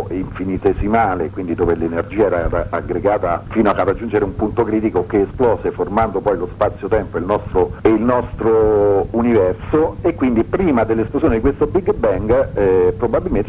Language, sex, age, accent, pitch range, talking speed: Italian, male, 50-69, native, 100-120 Hz, 145 wpm